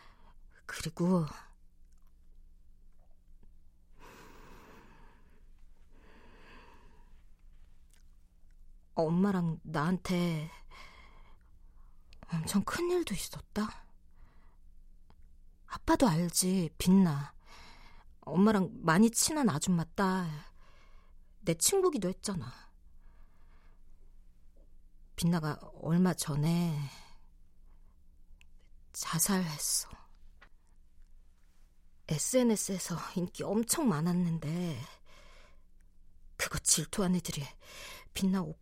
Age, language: 40-59, Korean